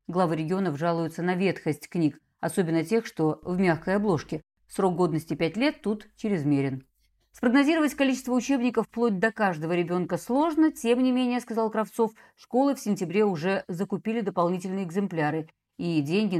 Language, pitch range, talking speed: Russian, 155-215 Hz, 145 wpm